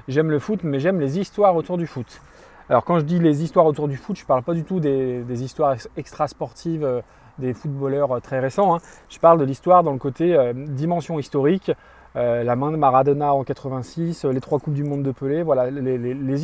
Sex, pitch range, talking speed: male, 135-175 Hz, 235 wpm